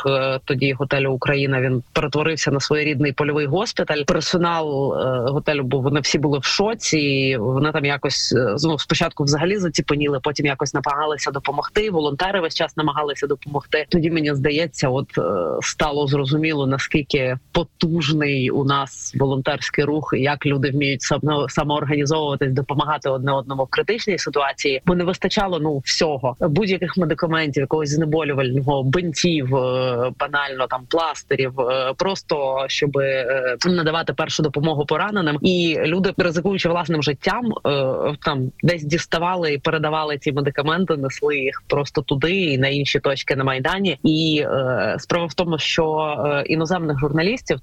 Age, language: 30-49, Ukrainian